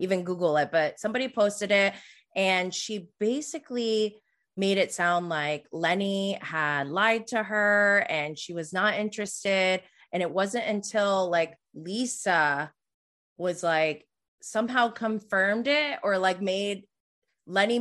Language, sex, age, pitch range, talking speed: English, female, 20-39, 175-215 Hz, 130 wpm